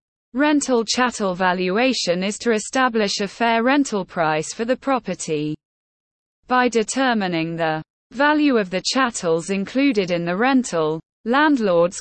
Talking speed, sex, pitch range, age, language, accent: 125 wpm, female, 175-250 Hz, 20-39, English, British